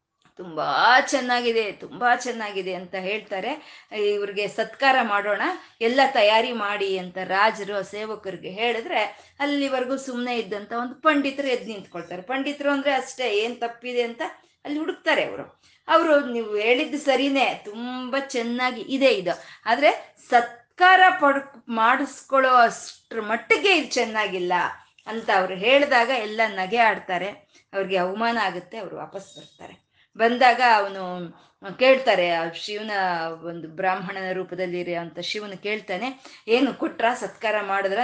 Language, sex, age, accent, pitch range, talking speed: Kannada, female, 20-39, native, 195-255 Hz, 115 wpm